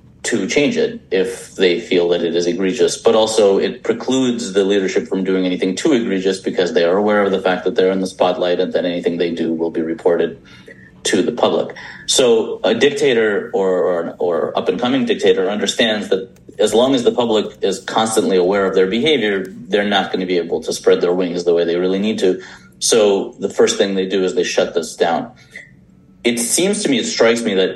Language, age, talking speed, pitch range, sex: English, 30-49, 215 wpm, 90-125 Hz, male